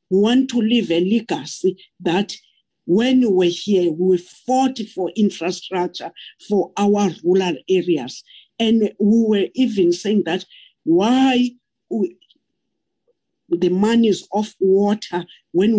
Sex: female